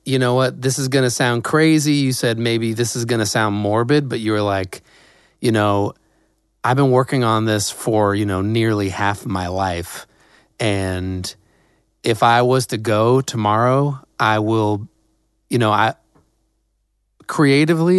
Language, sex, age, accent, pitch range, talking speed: English, male, 30-49, American, 105-130 Hz, 155 wpm